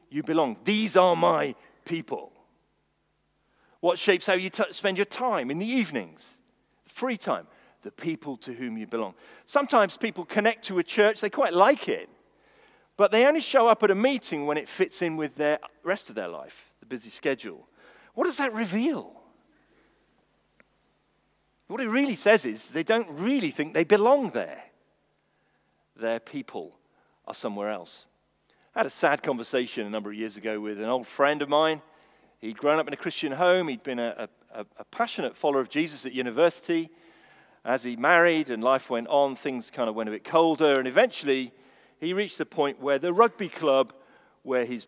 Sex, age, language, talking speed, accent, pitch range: male, 40-59, English, 185 wpm, British, 130-205 Hz